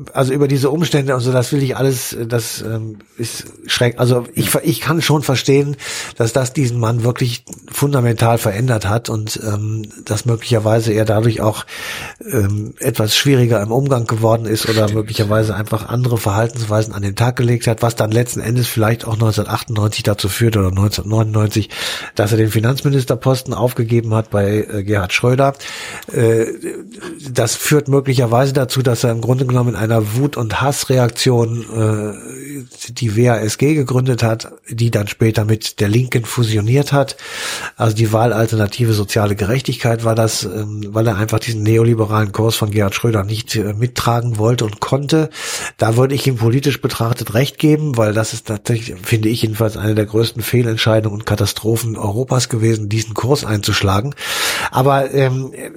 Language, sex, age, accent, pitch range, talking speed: German, male, 50-69, German, 110-130 Hz, 155 wpm